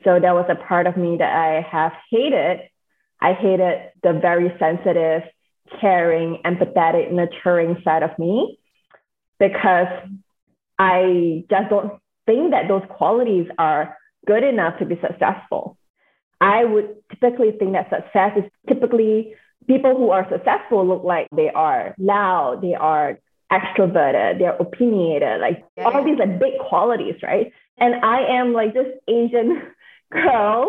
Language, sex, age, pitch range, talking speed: English, female, 20-39, 180-240 Hz, 145 wpm